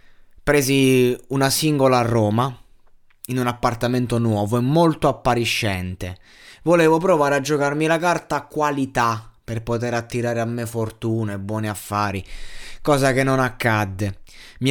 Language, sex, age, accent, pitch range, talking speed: Italian, male, 20-39, native, 110-135 Hz, 140 wpm